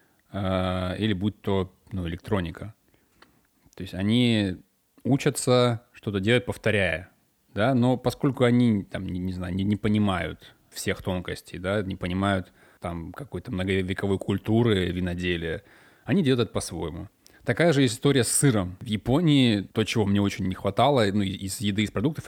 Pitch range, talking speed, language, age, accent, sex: 95-115 Hz, 140 wpm, Russian, 20-39, native, male